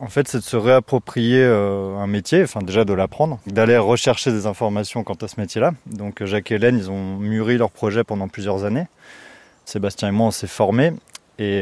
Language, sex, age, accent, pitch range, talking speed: French, male, 20-39, French, 100-120 Hz, 205 wpm